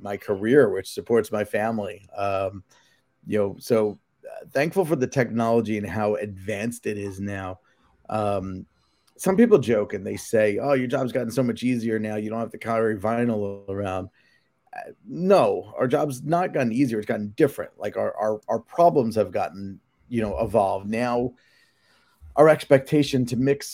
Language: English